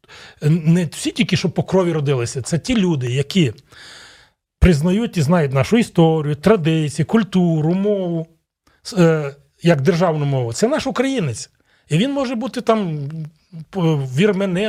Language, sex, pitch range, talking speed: Ukrainian, male, 150-205 Hz, 120 wpm